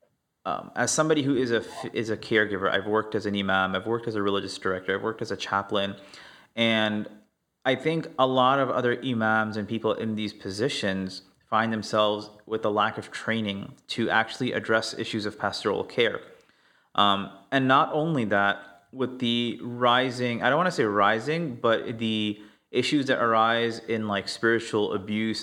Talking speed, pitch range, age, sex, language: 175 wpm, 100-120 Hz, 30-49, male, English